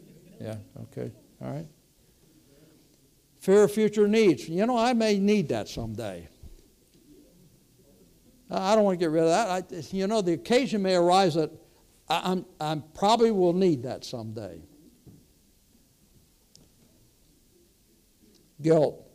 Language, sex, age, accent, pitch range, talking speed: English, male, 60-79, American, 120-175 Hz, 125 wpm